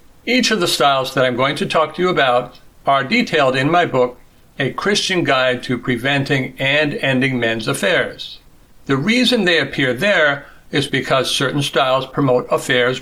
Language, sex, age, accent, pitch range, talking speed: English, male, 60-79, American, 125-165 Hz, 170 wpm